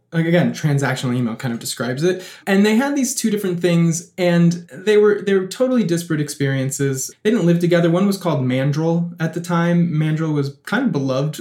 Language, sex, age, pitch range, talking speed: English, male, 20-39, 135-180 Hz, 205 wpm